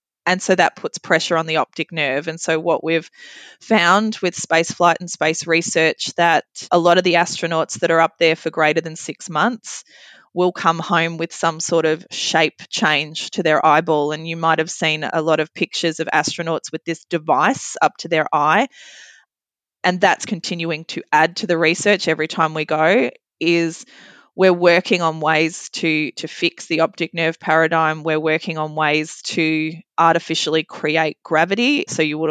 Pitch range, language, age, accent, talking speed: 155-175 Hz, English, 20-39, Australian, 185 wpm